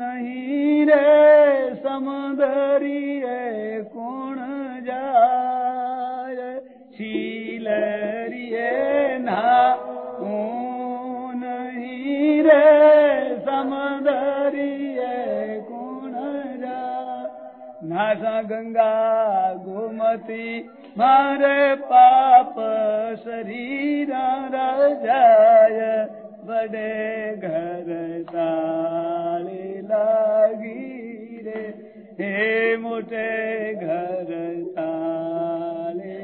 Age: 50-69